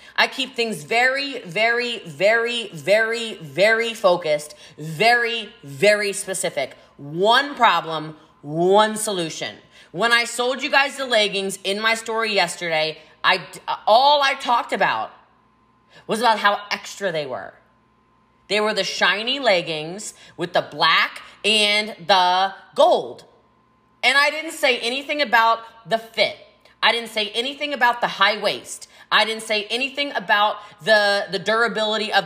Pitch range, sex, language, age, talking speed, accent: 195-240 Hz, female, English, 20-39, 135 wpm, American